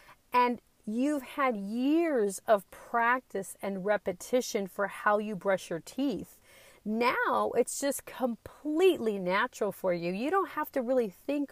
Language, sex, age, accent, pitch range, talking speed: English, female, 40-59, American, 200-270 Hz, 140 wpm